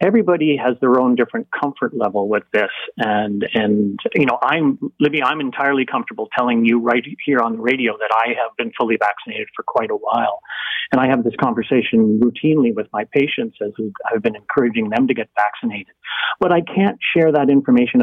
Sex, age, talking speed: male, 40-59, 195 wpm